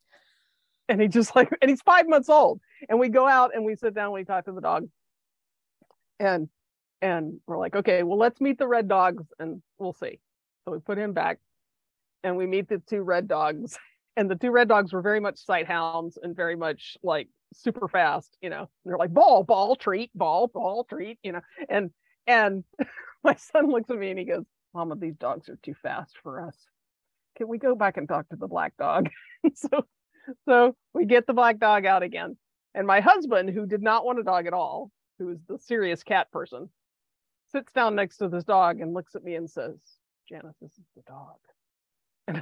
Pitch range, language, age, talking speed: 180-240 Hz, English, 40-59, 210 wpm